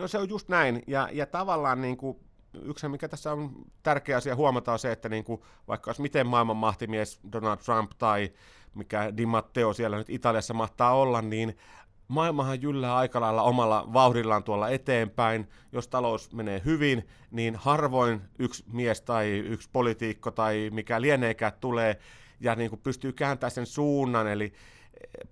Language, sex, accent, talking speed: Finnish, male, native, 165 wpm